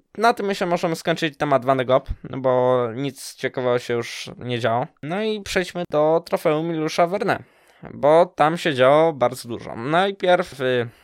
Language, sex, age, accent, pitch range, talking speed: Polish, male, 20-39, native, 125-165 Hz, 160 wpm